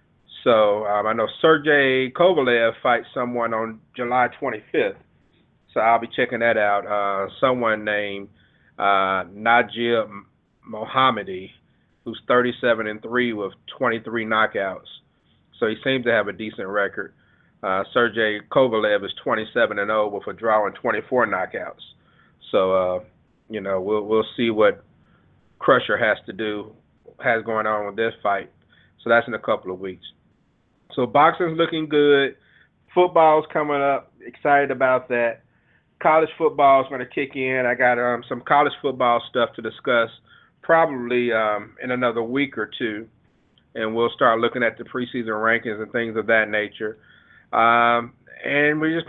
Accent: American